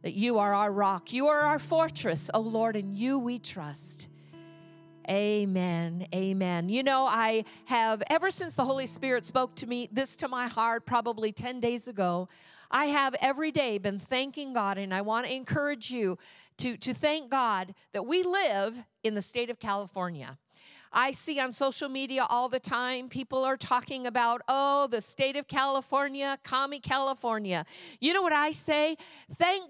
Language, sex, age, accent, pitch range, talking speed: English, female, 50-69, American, 210-280 Hz, 175 wpm